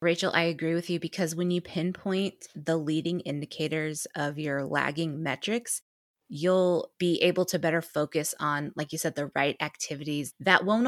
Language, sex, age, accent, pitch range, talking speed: English, female, 20-39, American, 150-180 Hz, 170 wpm